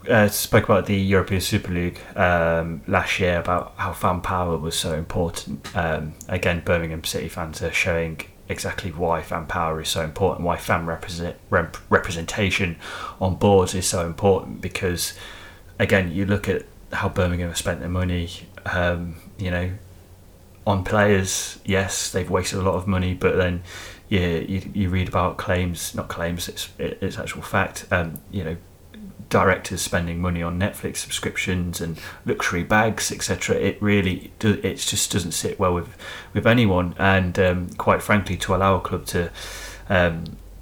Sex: male